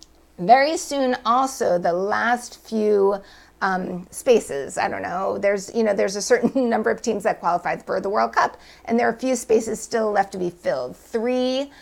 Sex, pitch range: female, 200-255 Hz